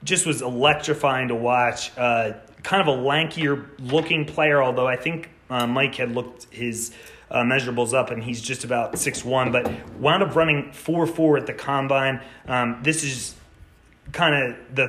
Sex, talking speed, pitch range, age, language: male, 175 wpm, 120-140 Hz, 30-49, English